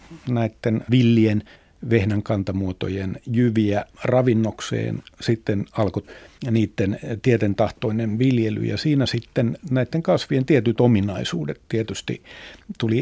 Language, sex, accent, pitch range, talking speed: Finnish, male, native, 105-125 Hz, 90 wpm